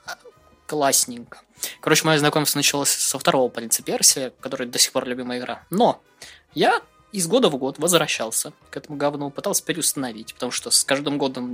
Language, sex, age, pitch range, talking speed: Russian, male, 20-39, 130-205 Hz, 165 wpm